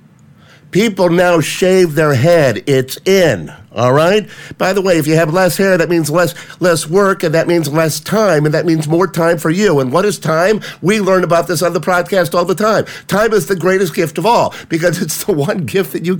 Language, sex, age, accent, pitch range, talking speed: English, male, 50-69, American, 120-200 Hz, 230 wpm